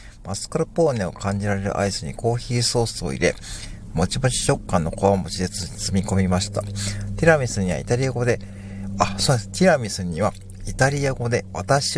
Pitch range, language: 90-120 Hz, Japanese